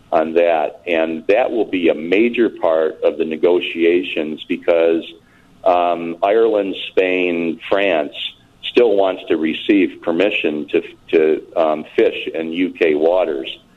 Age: 50-69